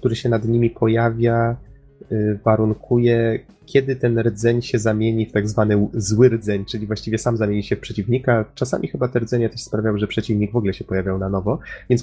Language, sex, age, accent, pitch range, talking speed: Polish, male, 30-49, native, 105-120 Hz, 190 wpm